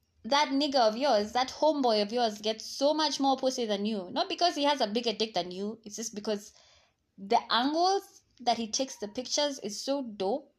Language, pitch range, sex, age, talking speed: English, 205-290 Hz, female, 20-39, 210 wpm